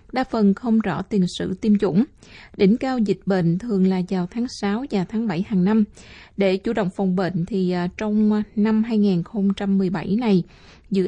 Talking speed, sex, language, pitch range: 180 wpm, female, Vietnamese, 180-215 Hz